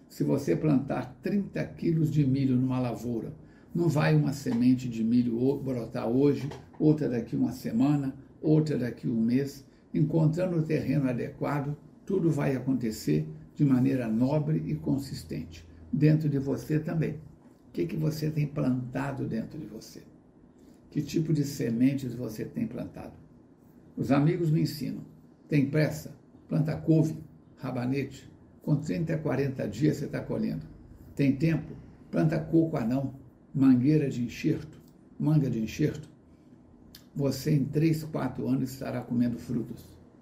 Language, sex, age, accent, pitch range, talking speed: Portuguese, male, 60-79, Brazilian, 120-150 Hz, 135 wpm